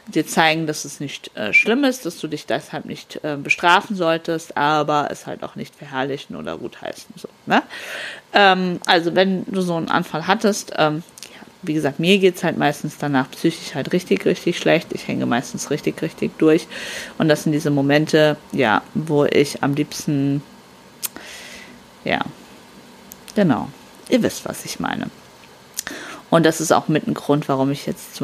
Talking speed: 175 wpm